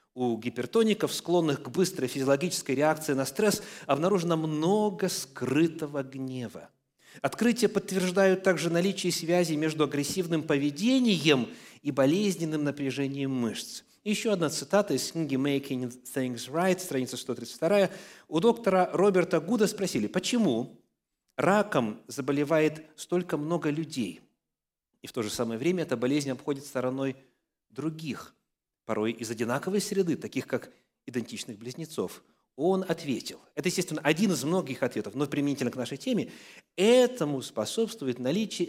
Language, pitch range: English, 135-185 Hz